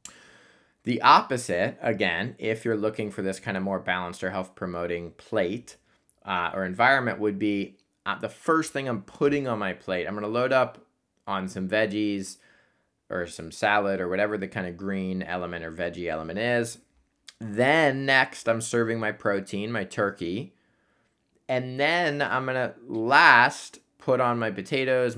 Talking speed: 165 wpm